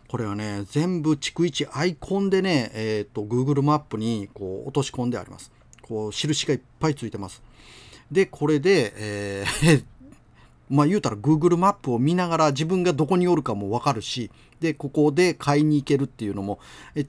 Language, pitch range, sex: Japanese, 105-155 Hz, male